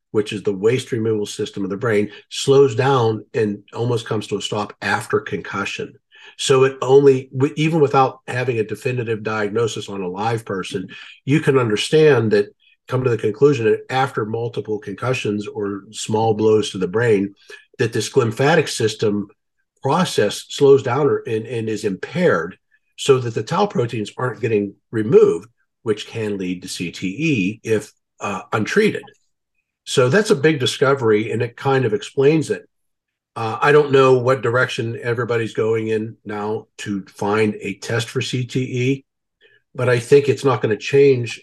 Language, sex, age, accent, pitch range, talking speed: English, male, 50-69, American, 105-135 Hz, 160 wpm